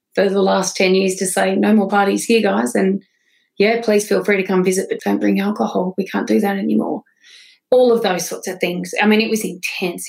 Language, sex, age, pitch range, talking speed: English, female, 30-49, 185-215 Hz, 240 wpm